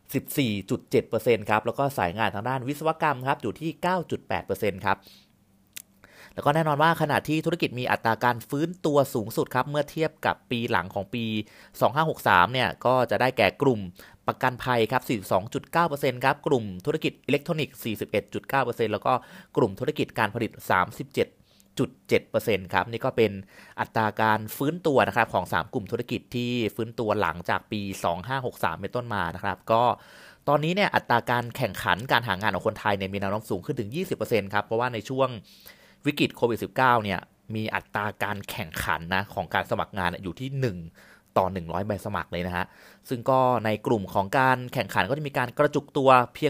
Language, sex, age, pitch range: Thai, male, 30-49, 105-135 Hz